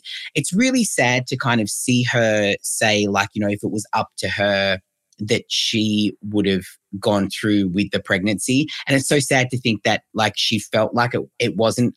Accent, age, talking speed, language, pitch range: Australian, 30-49, 205 wpm, English, 105-135 Hz